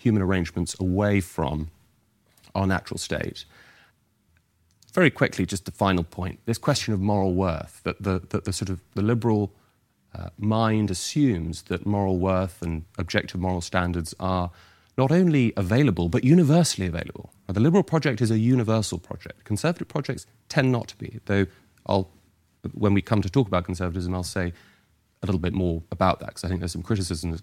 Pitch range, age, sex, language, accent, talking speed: 90-115 Hz, 30-49, male, English, British, 175 wpm